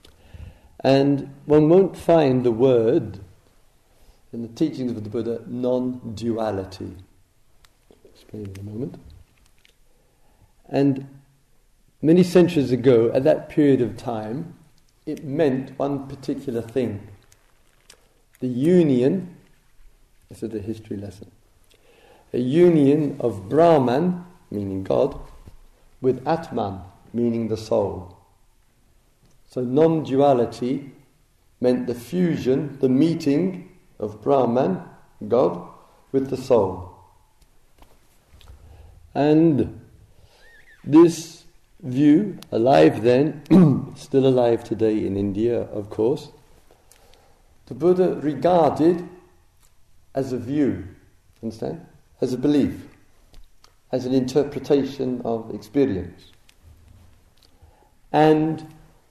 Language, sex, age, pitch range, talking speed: English, male, 50-69, 105-145 Hz, 95 wpm